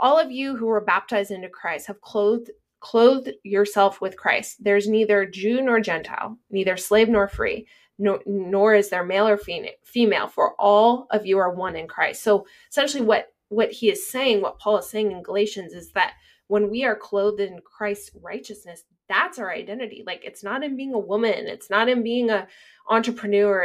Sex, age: female, 20-39